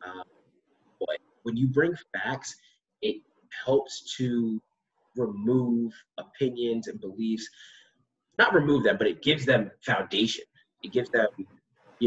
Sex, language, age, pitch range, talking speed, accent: male, English, 20-39, 100-135 Hz, 125 wpm, American